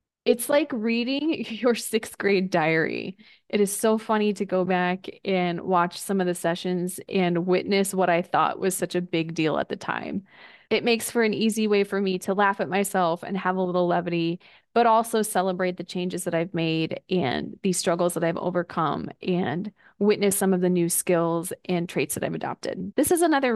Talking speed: 200 wpm